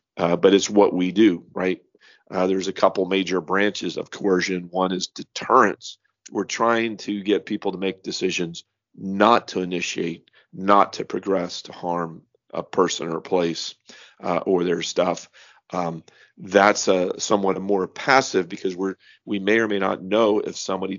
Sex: male